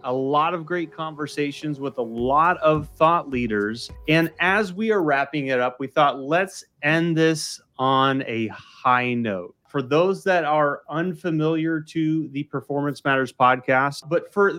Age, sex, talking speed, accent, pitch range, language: 30-49, male, 160 wpm, American, 125-160 Hz, English